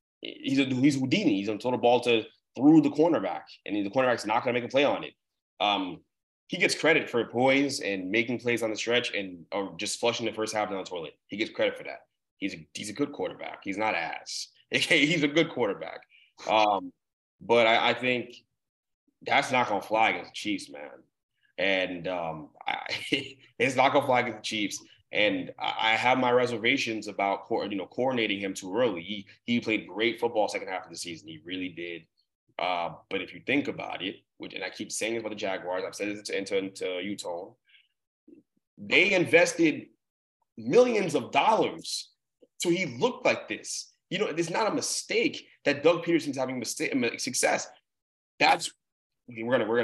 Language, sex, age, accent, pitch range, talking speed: English, male, 20-39, American, 105-150 Hz, 190 wpm